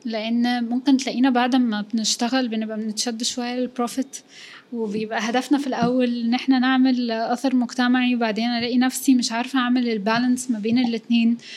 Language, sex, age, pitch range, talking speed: Arabic, female, 10-29, 230-265 Hz, 150 wpm